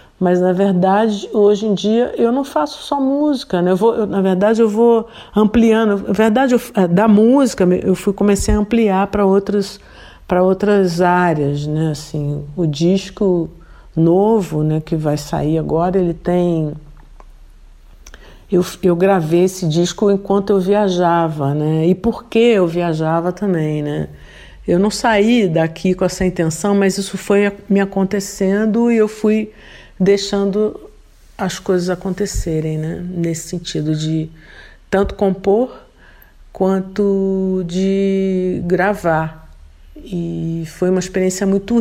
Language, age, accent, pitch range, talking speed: Portuguese, 50-69, Brazilian, 170-200 Hz, 135 wpm